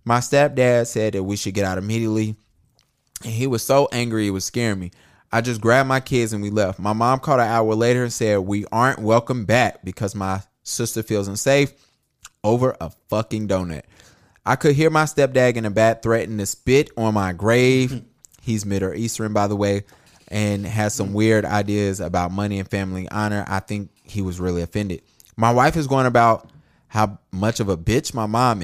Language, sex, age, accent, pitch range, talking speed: English, male, 20-39, American, 95-120 Hz, 195 wpm